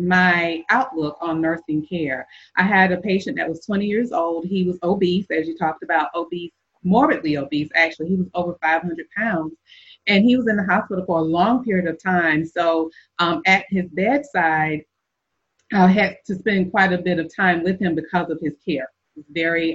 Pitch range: 165-205 Hz